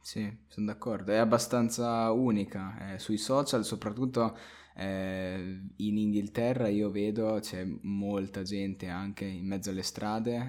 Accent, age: native, 20-39